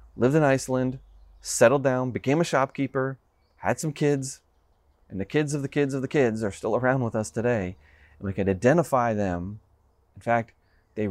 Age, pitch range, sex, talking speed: 30-49, 100-135 Hz, male, 185 wpm